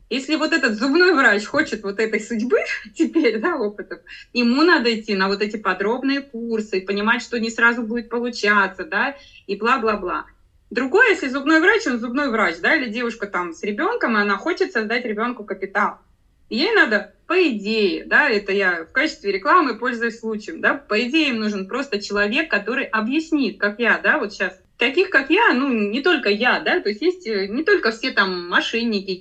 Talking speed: 185 wpm